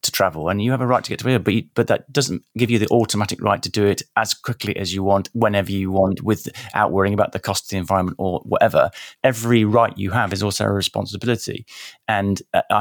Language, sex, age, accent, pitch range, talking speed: English, male, 30-49, British, 95-120 Hz, 250 wpm